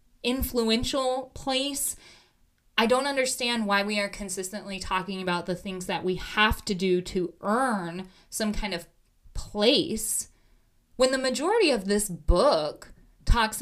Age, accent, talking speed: 20-39, American, 135 wpm